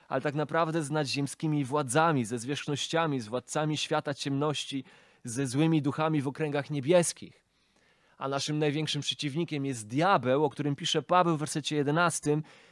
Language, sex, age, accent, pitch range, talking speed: Polish, male, 20-39, native, 135-160 Hz, 145 wpm